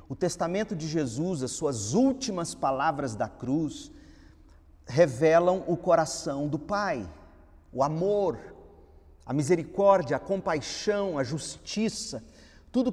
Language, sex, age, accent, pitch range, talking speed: Portuguese, male, 40-59, Brazilian, 120-175 Hz, 110 wpm